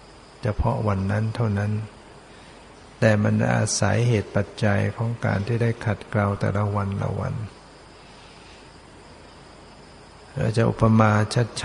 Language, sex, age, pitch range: Thai, male, 60-79, 105-115 Hz